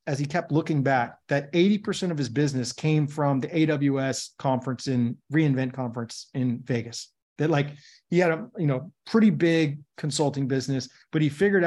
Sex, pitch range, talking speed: male, 135-160 Hz, 165 wpm